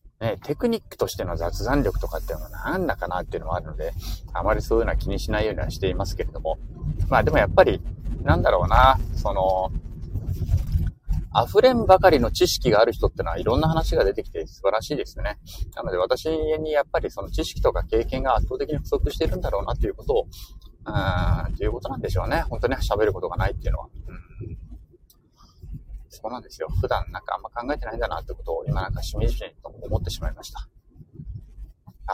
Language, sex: Japanese, male